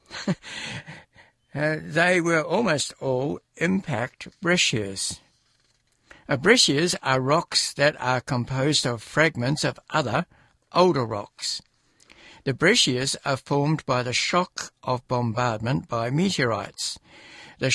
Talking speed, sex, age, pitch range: 105 wpm, male, 60-79, 125-160 Hz